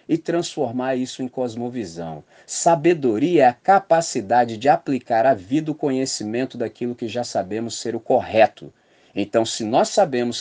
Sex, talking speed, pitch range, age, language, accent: male, 150 wpm, 110-140 Hz, 40-59, Portuguese, Brazilian